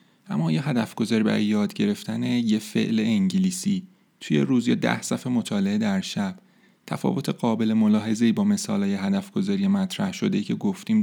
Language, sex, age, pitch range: Persian, male, 30-49, 135-210 Hz